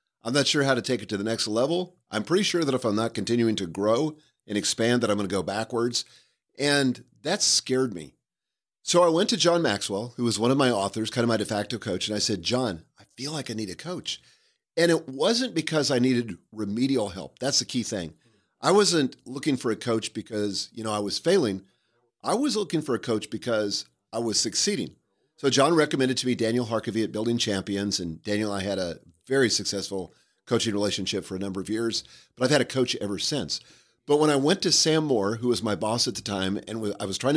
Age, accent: 40-59, American